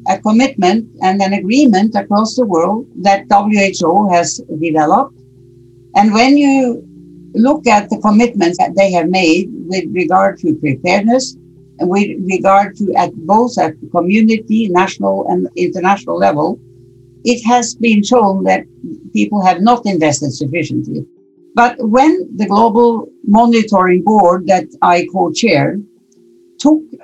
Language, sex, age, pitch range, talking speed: English, female, 60-79, 180-245 Hz, 135 wpm